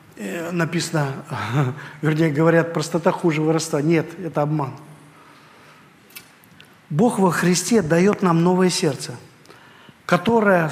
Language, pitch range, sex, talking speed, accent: Russian, 160-225 Hz, male, 95 wpm, native